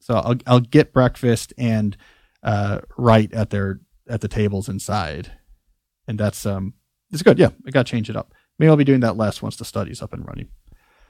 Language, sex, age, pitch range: English, male, 40-59, 110-135 Hz